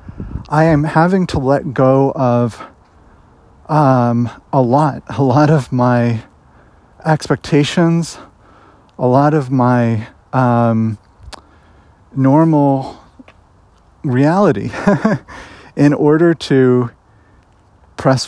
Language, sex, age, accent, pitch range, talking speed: English, male, 40-59, American, 115-145 Hz, 85 wpm